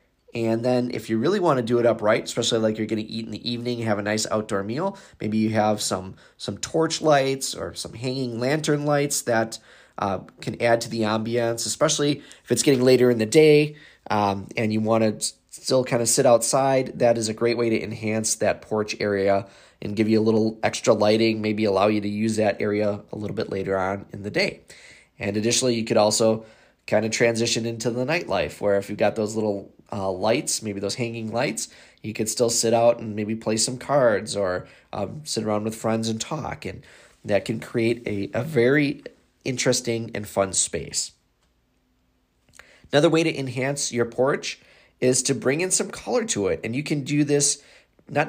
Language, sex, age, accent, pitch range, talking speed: English, male, 20-39, American, 110-130 Hz, 205 wpm